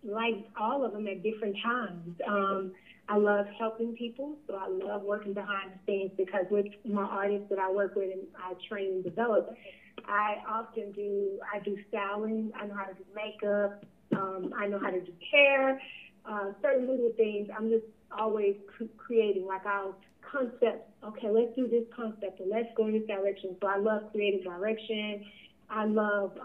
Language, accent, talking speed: English, American, 185 wpm